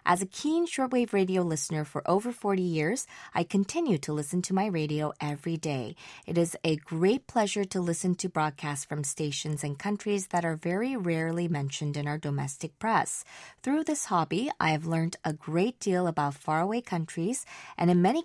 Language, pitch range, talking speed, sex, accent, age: English, 155-210 Hz, 185 wpm, female, American, 20-39